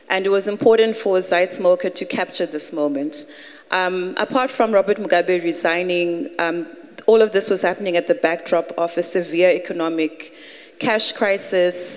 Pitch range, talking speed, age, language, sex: 165-200 Hz, 155 wpm, 20-39, English, female